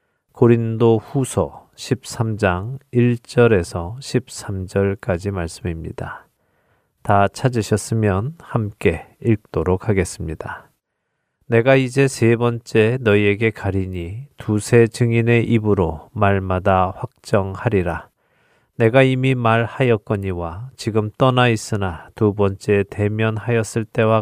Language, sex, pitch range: Korean, male, 100-120 Hz